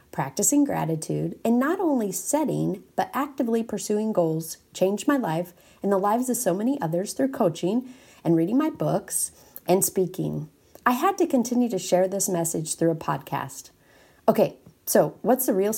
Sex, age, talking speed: female, 40-59, 165 wpm